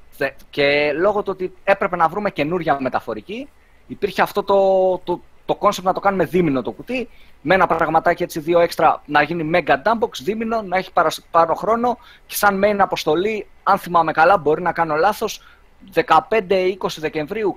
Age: 30-49